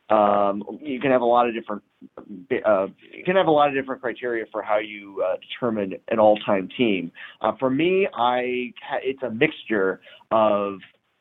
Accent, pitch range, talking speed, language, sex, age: American, 105-130 Hz, 175 wpm, English, male, 30-49